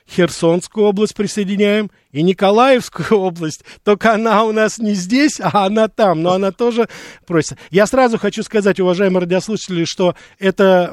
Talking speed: 150 wpm